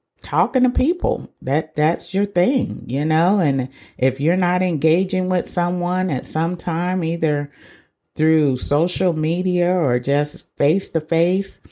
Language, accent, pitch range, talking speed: English, American, 130-185 Hz, 130 wpm